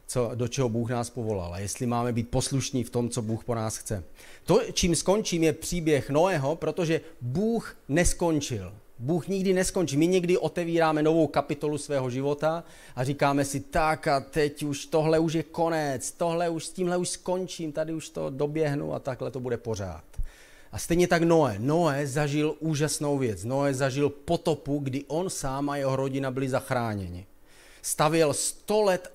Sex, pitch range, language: male, 130-160 Hz, Czech